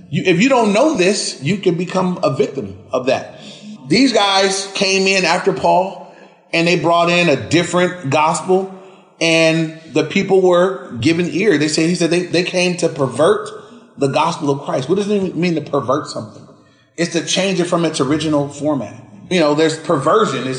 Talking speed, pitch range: 185 wpm, 155-195 Hz